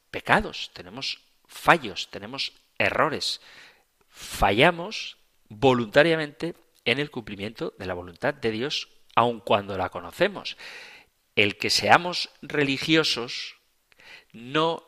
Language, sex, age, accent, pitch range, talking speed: Spanish, male, 40-59, Spanish, 110-150 Hz, 100 wpm